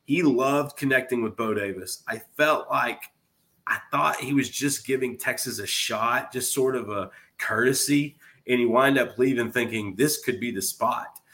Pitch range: 110-130 Hz